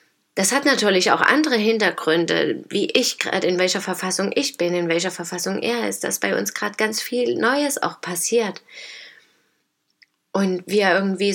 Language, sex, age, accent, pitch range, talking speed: German, female, 20-39, German, 185-230 Hz, 165 wpm